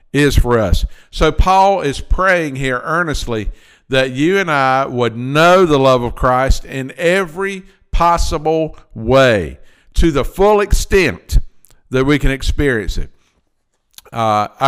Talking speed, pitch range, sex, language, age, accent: 135 wpm, 120-145 Hz, male, English, 50-69, American